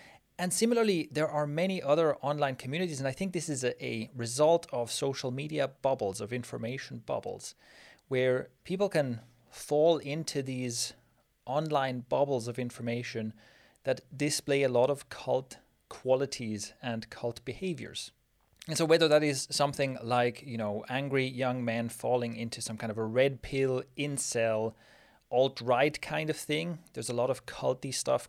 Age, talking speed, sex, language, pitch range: 30-49, 155 wpm, male, English, 120-150 Hz